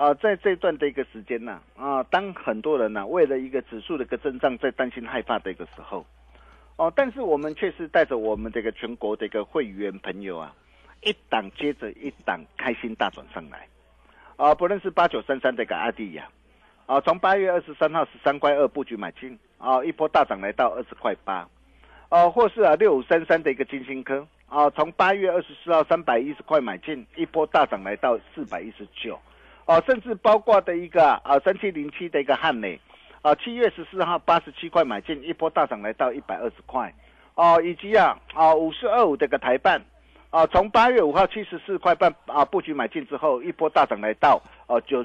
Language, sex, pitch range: Chinese, male, 140-190 Hz